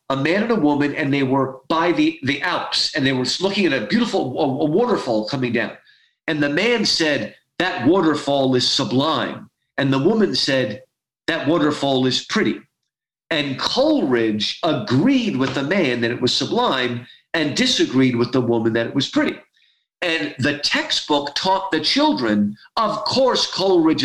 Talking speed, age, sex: 165 wpm, 50-69, male